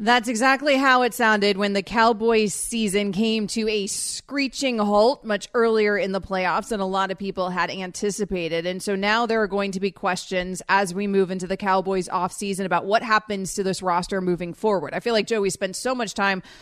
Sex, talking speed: female, 215 wpm